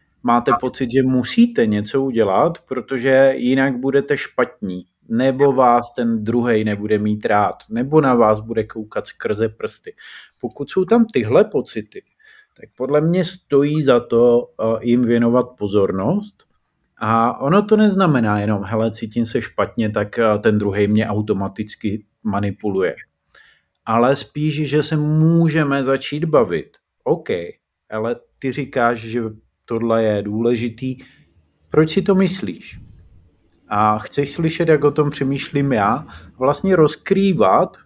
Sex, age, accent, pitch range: male, 30-49, native, 110-150 Hz